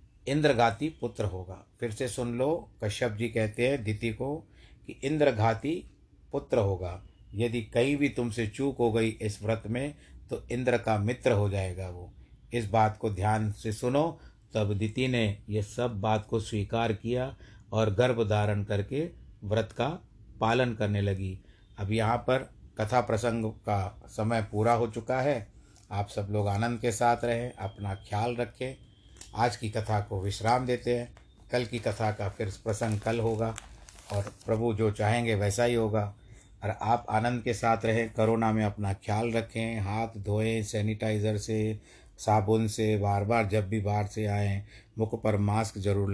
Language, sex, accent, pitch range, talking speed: Hindi, male, native, 105-115 Hz, 170 wpm